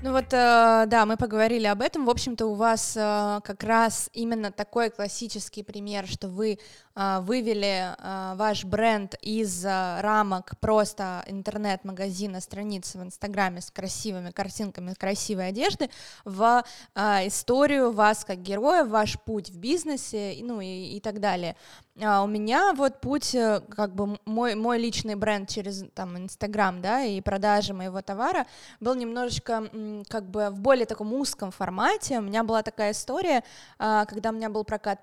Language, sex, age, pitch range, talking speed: Russian, female, 20-39, 200-230 Hz, 140 wpm